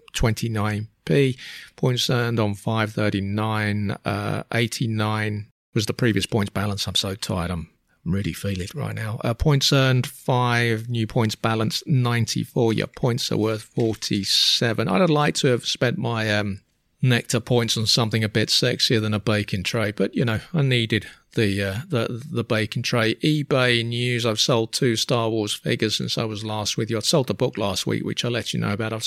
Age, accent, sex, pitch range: 40-59, British, male, 105-120 Hz